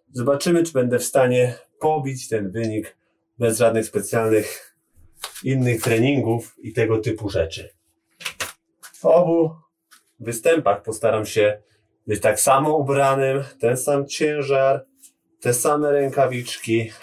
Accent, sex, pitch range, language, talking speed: native, male, 110-140 Hz, Polish, 115 wpm